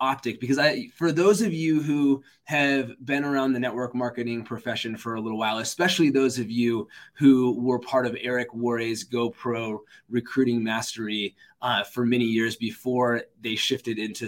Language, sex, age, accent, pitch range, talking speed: English, male, 20-39, American, 115-140 Hz, 170 wpm